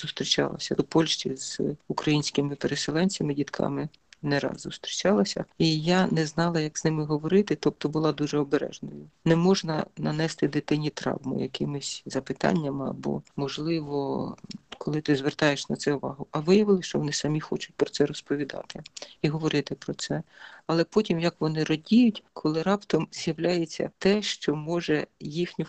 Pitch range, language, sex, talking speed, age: 150-170 Hz, Ukrainian, female, 145 wpm, 50-69